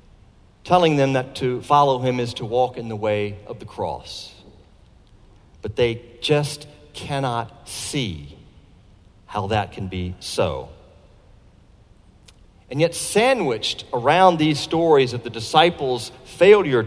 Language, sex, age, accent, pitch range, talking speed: English, male, 50-69, American, 95-140 Hz, 125 wpm